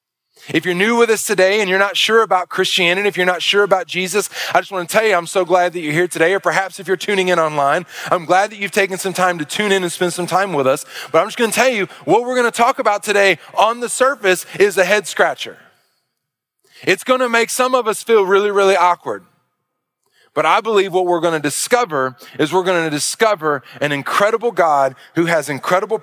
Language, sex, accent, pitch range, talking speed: English, male, American, 175-210 Hz, 240 wpm